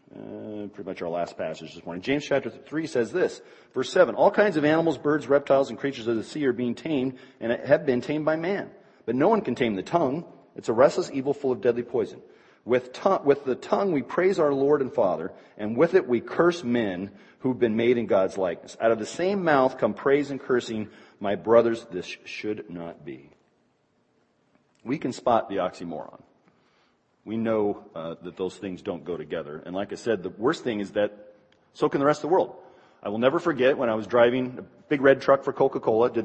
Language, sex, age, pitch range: English, male, 40-59, 105-145 Hz